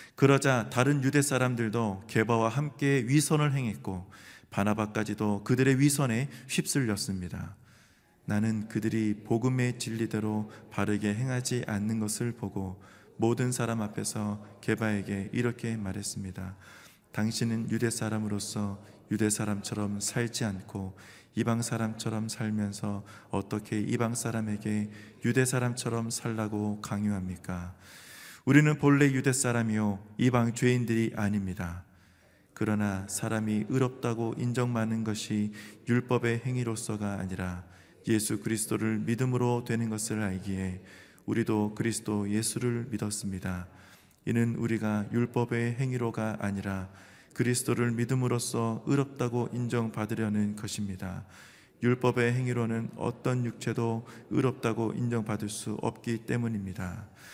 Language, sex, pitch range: Korean, male, 105-120 Hz